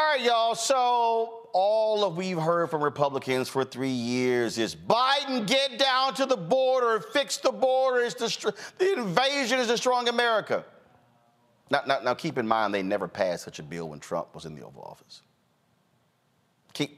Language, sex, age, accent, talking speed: English, male, 40-59, American, 175 wpm